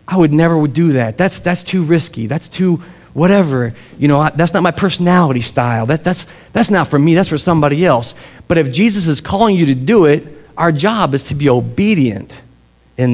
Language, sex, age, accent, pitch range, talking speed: English, male, 40-59, American, 125-170 Hz, 210 wpm